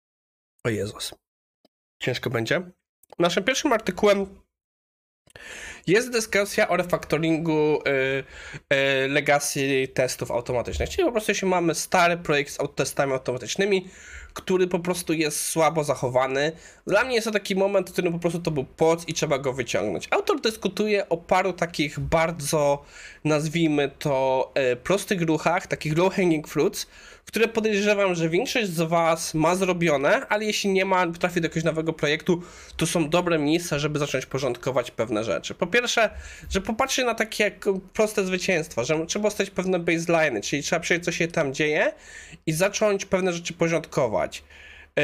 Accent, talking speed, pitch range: native, 155 wpm, 140-190 Hz